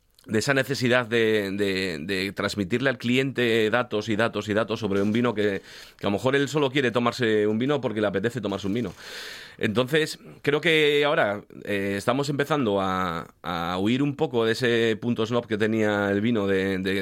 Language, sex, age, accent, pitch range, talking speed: Spanish, male, 30-49, Spanish, 100-125 Hz, 200 wpm